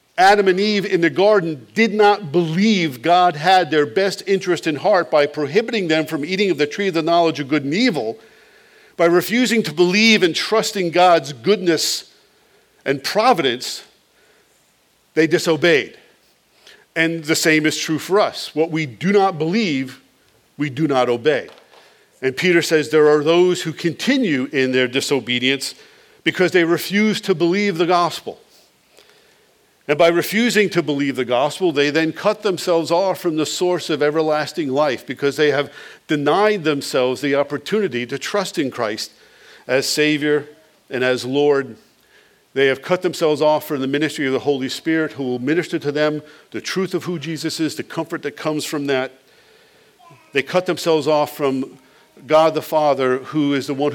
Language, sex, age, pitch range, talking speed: English, male, 50-69, 145-185 Hz, 170 wpm